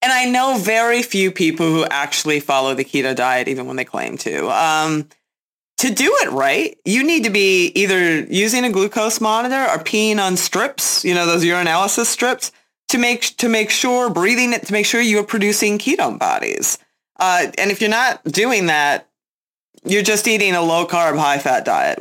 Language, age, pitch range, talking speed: English, 30-49, 165-235 Hz, 195 wpm